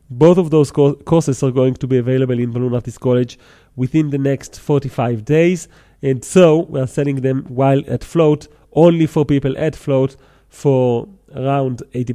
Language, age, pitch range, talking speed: English, 30-49, 125-150 Hz, 180 wpm